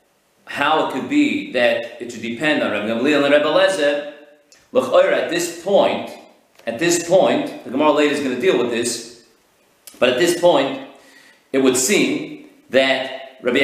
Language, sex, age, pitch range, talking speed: English, male, 40-59, 145-200 Hz, 165 wpm